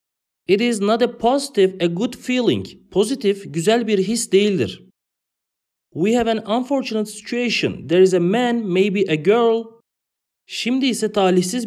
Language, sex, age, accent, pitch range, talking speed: English, male, 40-59, Turkish, 170-225 Hz, 145 wpm